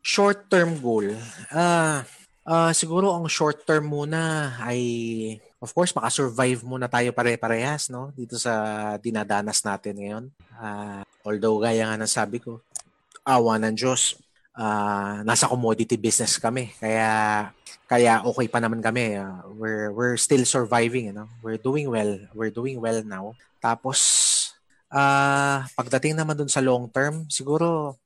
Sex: male